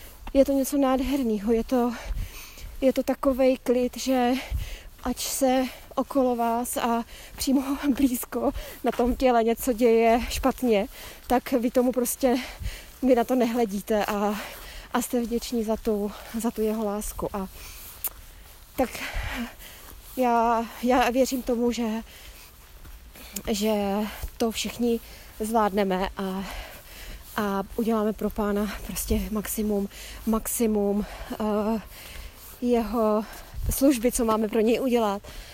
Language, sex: Czech, female